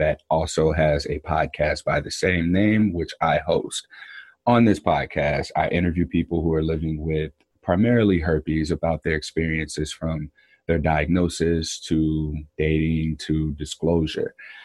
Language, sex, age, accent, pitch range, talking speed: English, male, 30-49, American, 80-90 Hz, 140 wpm